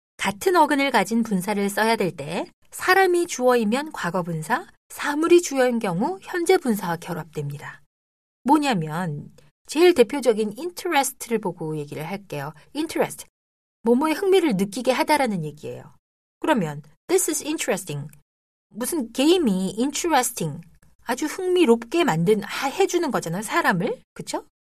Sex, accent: female, native